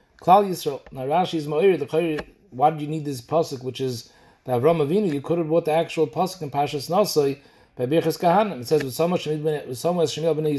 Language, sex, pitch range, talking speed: English, male, 145-175 Hz, 205 wpm